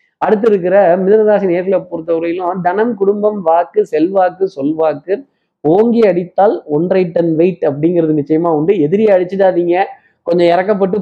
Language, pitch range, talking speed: Tamil, 150-185 Hz, 115 wpm